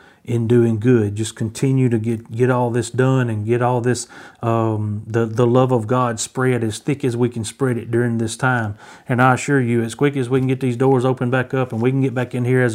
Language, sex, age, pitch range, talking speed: English, male, 40-59, 115-140 Hz, 260 wpm